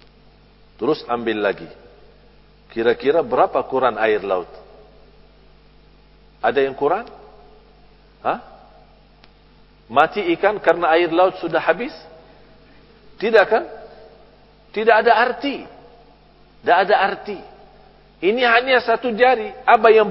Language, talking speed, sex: English, 95 wpm, male